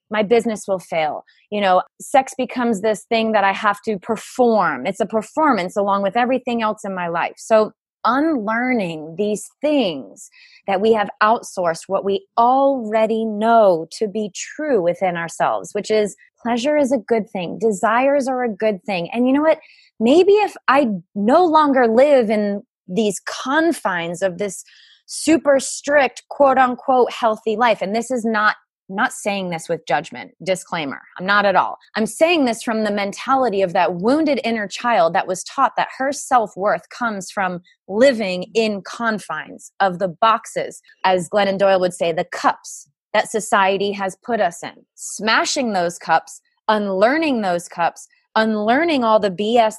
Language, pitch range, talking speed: English, 195-260 Hz, 165 wpm